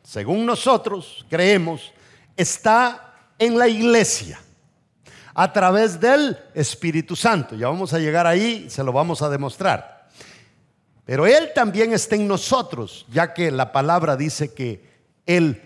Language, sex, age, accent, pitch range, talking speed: English, male, 50-69, Mexican, 145-230 Hz, 135 wpm